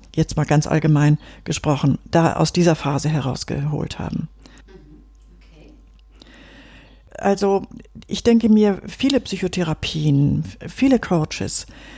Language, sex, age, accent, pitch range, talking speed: German, female, 50-69, German, 170-215 Hz, 95 wpm